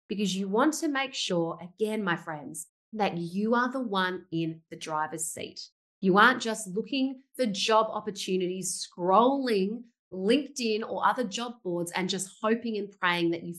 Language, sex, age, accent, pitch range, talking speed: English, female, 30-49, Australian, 175-230 Hz, 170 wpm